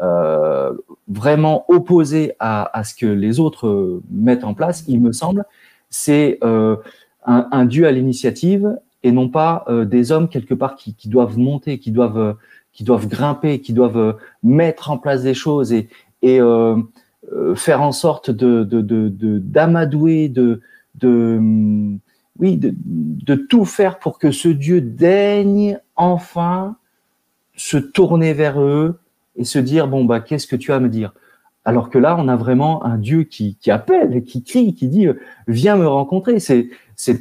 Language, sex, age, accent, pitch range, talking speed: French, male, 40-59, French, 120-175 Hz, 165 wpm